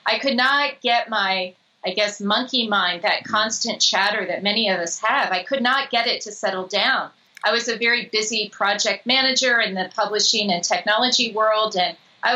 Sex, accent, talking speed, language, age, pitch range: female, American, 195 wpm, English, 40-59, 200-260 Hz